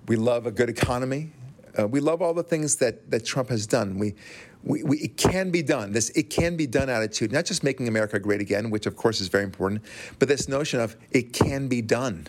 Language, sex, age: English, male, 40-59